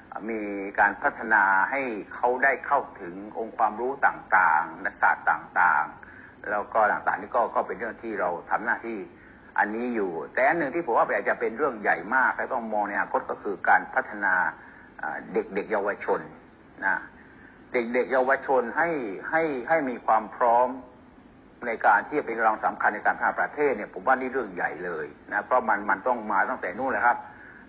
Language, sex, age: English, male, 60-79